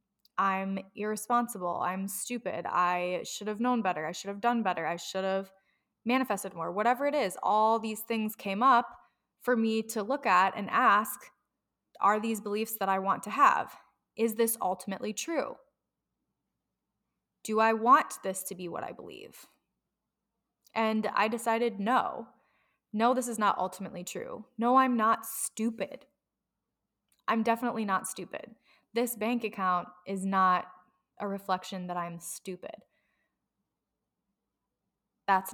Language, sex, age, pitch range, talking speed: English, female, 20-39, 190-230 Hz, 140 wpm